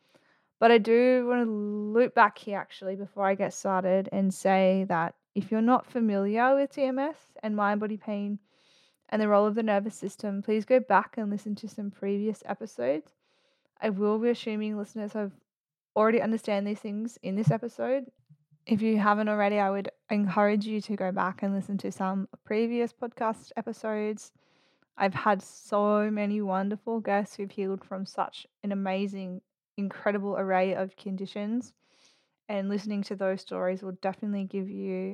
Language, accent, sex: English, Australian, female